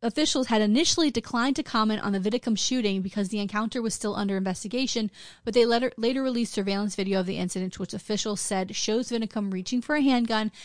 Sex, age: female, 30-49